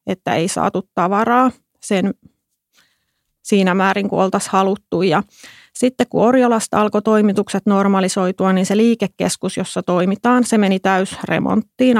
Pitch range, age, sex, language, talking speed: 185-220 Hz, 30-49, female, Finnish, 125 wpm